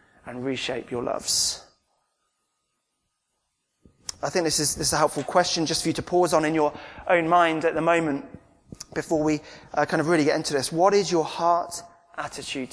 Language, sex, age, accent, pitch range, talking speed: English, male, 20-39, British, 140-170 Hz, 190 wpm